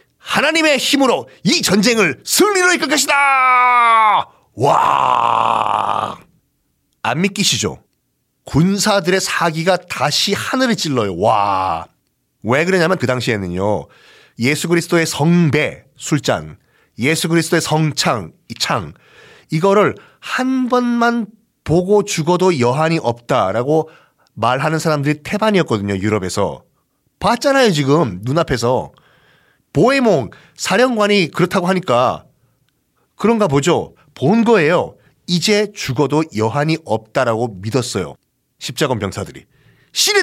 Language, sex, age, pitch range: Korean, male, 40-59, 140-235 Hz